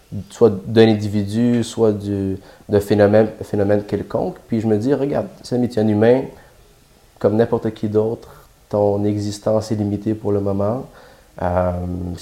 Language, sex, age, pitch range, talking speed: English, male, 30-49, 100-115 Hz, 150 wpm